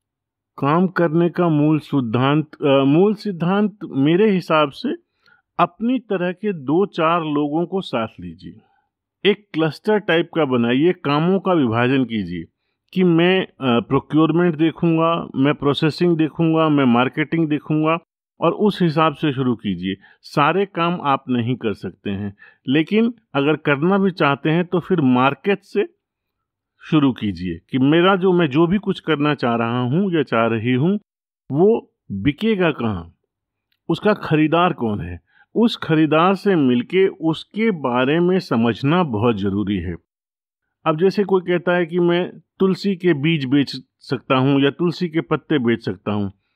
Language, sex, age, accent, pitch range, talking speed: Hindi, male, 50-69, native, 125-180 Hz, 150 wpm